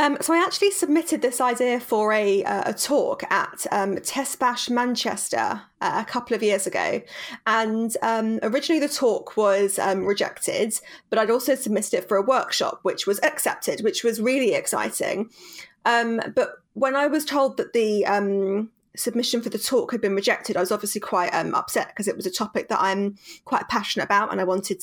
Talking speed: 195 wpm